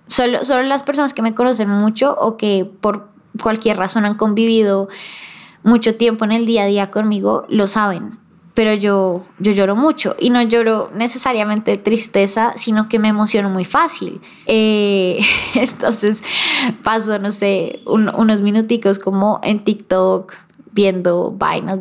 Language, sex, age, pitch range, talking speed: Spanish, female, 10-29, 195-235 Hz, 150 wpm